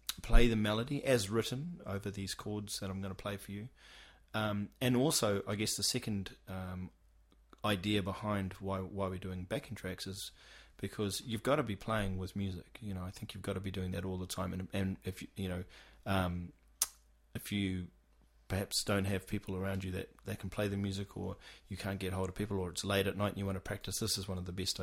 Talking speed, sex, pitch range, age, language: 235 wpm, male, 95-110 Hz, 30-49, English